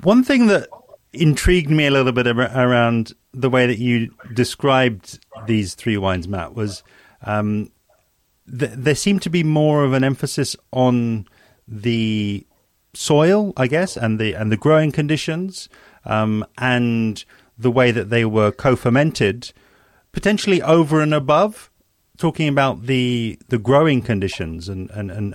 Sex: male